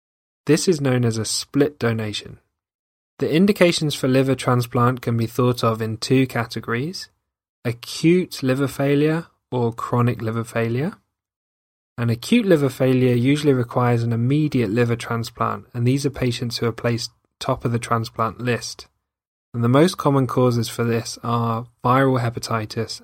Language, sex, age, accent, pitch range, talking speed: English, male, 20-39, British, 115-130 Hz, 150 wpm